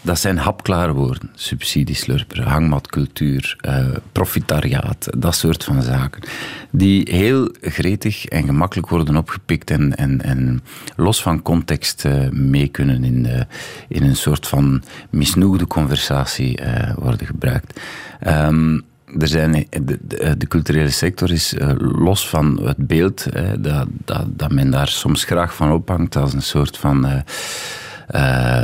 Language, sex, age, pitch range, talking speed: Dutch, male, 40-59, 70-95 Hz, 145 wpm